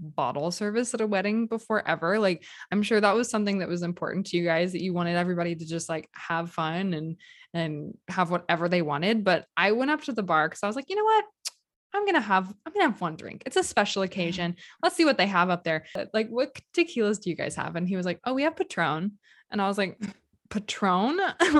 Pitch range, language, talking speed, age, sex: 175-245 Hz, English, 250 wpm, 20-39, female